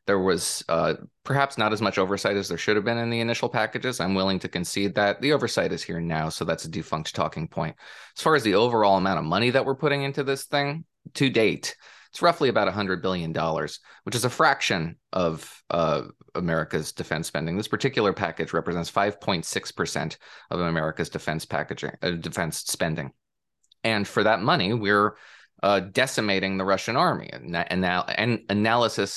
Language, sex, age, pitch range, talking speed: English, male, 30-49, 85-110 Hz, 180 wpm